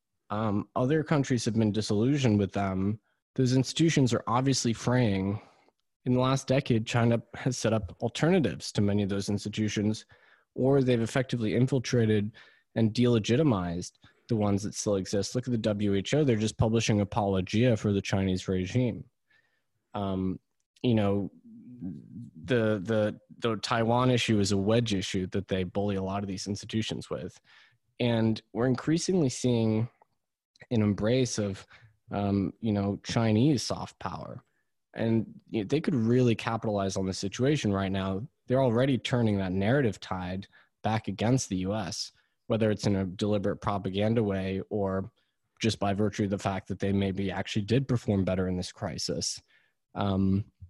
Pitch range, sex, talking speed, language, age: 100-120 Hz, male, 155 wpm, English, 20-39